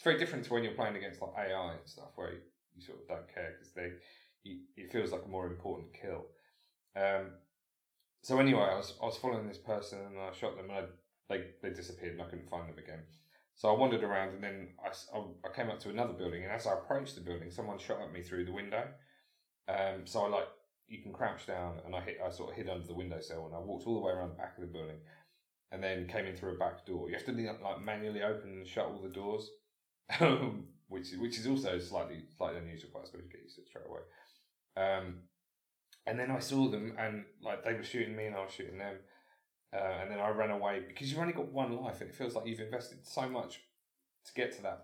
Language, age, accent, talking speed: English, 30-49, British, 250 wpm